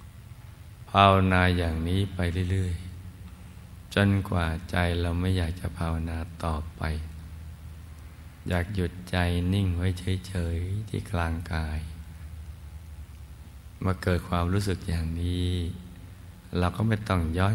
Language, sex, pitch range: Thai, male, 80-90 Hz